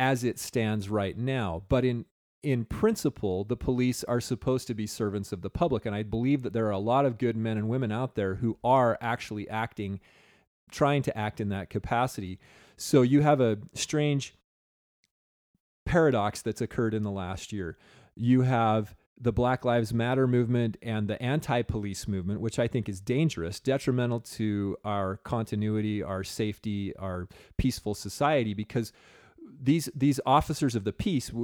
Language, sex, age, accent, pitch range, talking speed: English, male, 30-49, American, 100-125 Hz, 170 wpm